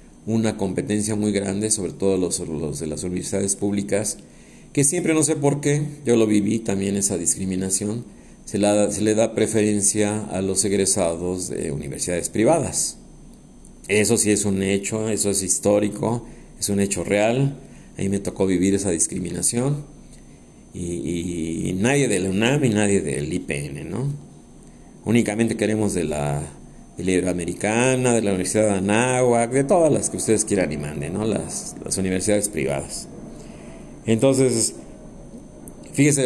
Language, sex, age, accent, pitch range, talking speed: Spanish, male, 50-69, Mexican, 90-115 Hz, 150 wpm